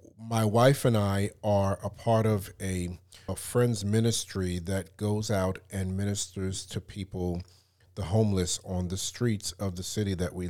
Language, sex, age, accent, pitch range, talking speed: English, male, 40-59, American, 90-105 Hz, 165 wpm